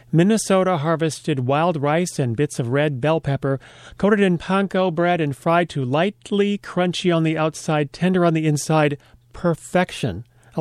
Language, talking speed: English, 160 wpm